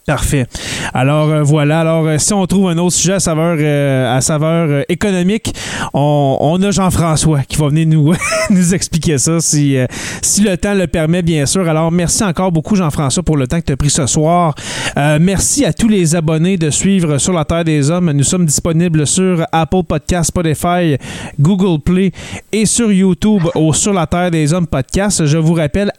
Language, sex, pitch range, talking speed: French, male, 150-185 Hz, 205 wpm